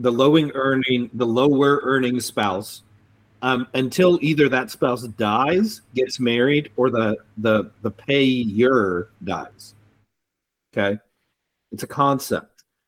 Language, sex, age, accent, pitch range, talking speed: English, male, 40-59, American, 110-140 Hz, 120 wpm